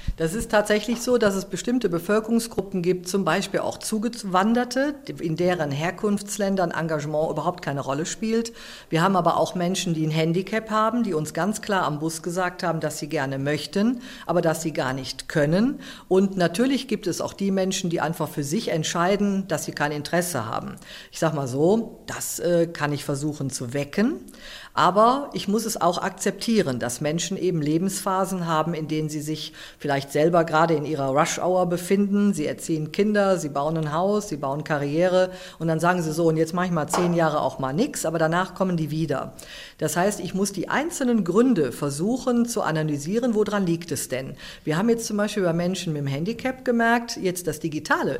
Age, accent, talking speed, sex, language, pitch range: 50-69, German, 195 wpm, female, German, 155-210 Hz